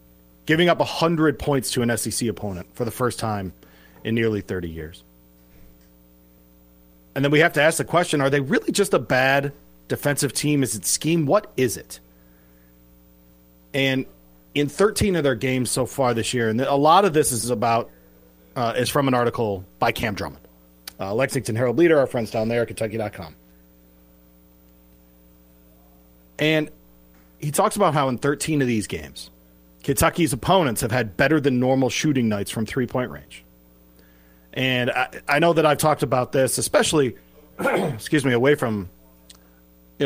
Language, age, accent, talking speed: English, 30-49, American, 160 wpm